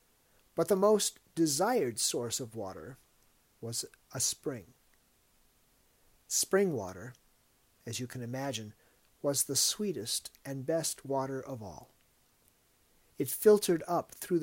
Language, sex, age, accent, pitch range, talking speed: English, male, 50-69, American, 125-175 Hz, 115 wpm